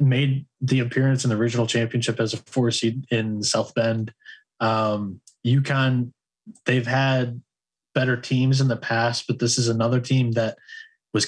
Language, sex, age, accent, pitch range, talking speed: English, male, 20-39, American, 110-125 Hz, 160 wpm